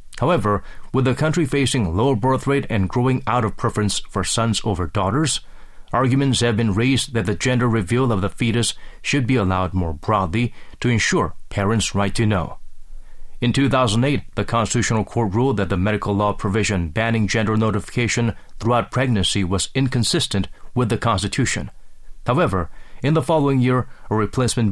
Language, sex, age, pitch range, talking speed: English, male, 30-49, 100-130 Hz, 165 wpm